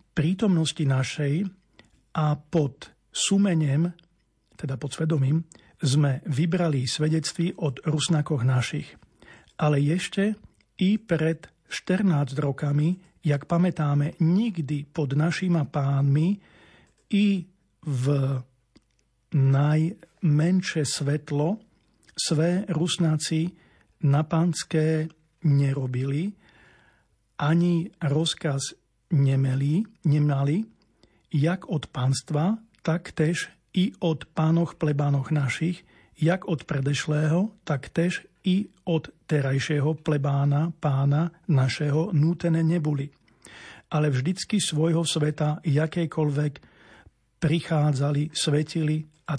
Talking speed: 85 wpm